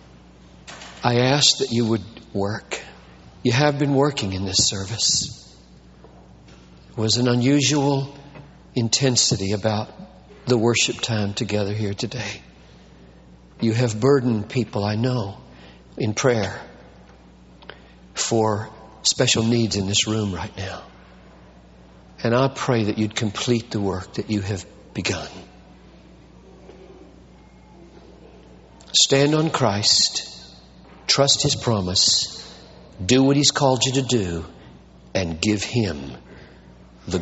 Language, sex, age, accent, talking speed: English, male, 50-69, American, 115 wpm